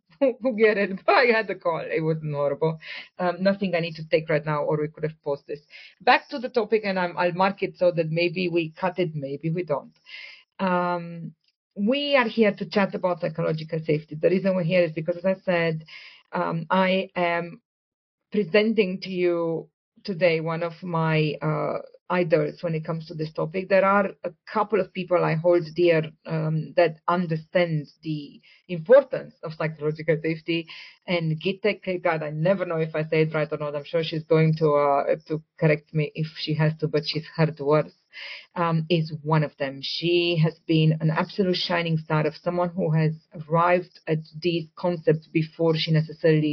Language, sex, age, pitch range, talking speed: English, female, 40-59, 155-185 Hz, 185 wpm